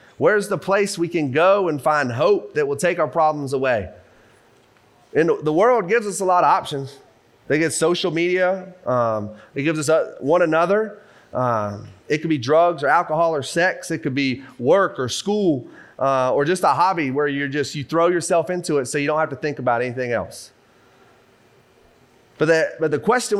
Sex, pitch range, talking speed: male, 140-185 Hz, 190 wpm